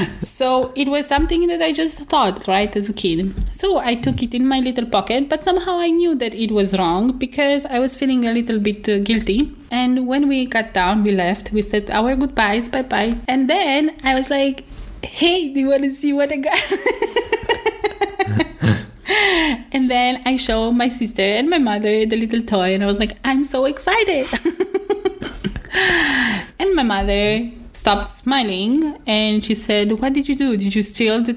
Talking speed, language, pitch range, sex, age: 185 wpm, English, 215-280 Hz, female, 20-39